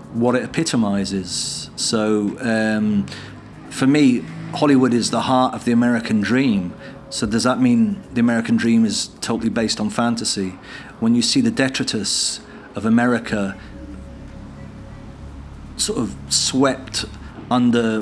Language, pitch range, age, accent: English, 100-135 Hz, 40-59, British